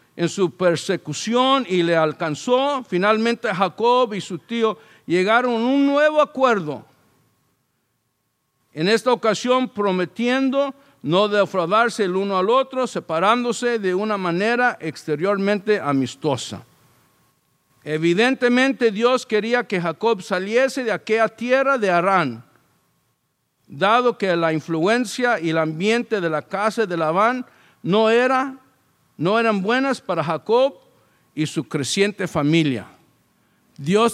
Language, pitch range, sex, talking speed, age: English, 170-235 Hz, male, 120 wpm, 50-69